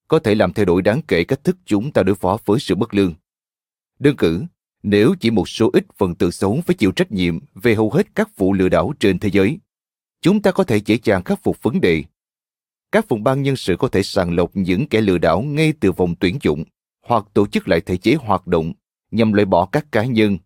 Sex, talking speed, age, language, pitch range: male, 245 wpm, 30-49, Vietnamese, 95-135 Hz